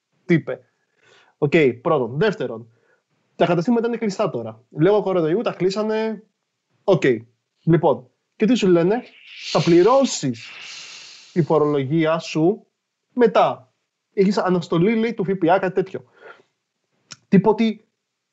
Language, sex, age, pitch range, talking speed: Greek, male, 20-39, 160-225 Hz, 110 wpm